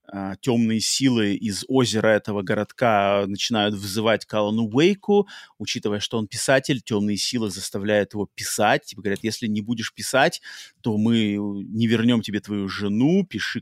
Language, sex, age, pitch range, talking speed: Russian, male, 30-49, 105-135 Hz, 140 wpm